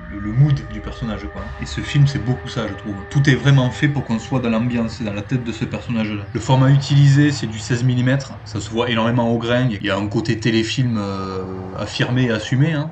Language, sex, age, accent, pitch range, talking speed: French, male, 20-39, French, 105-135 Hz, 245 wpm